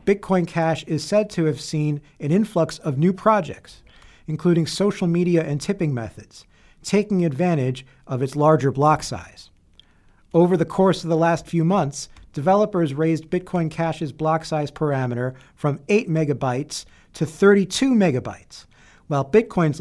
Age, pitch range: 40-59, 135-180 Hz